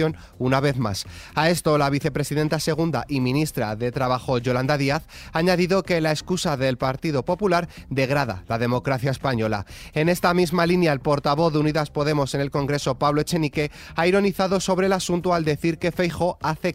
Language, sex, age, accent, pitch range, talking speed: Spanish, male, 30-49, Spanish, 120-165 Hz, 180 wpm